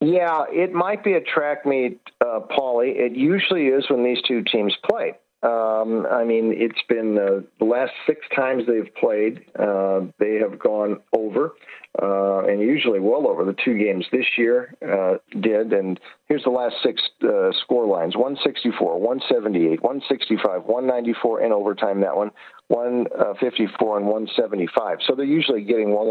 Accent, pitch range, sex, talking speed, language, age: American, 110-140 Hz, male, 160 wpm, English, 50-69